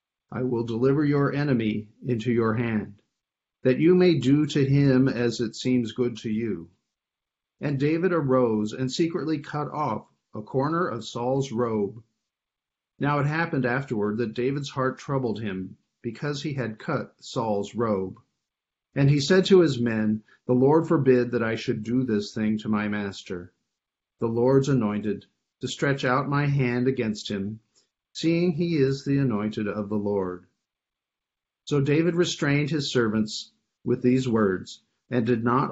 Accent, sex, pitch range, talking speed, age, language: American, male, 110-140 Hz, 160 wpm, 50-69, English